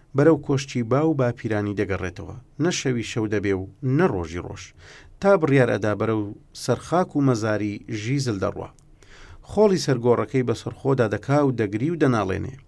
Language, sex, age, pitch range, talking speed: Persian, male, 40-59, 105-145 Hz, 155 wpm